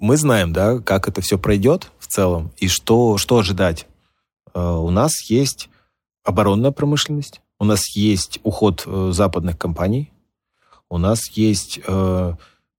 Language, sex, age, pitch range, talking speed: Russian, male, 20-39, 90-115 Hz, 125 wpm